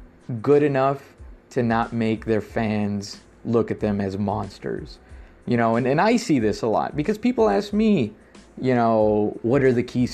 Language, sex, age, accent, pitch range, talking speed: English, male, 20-39, American, 110-135 Hz, 185 wpm